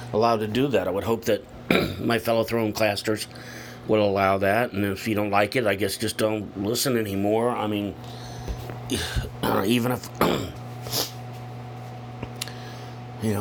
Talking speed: 150 wpm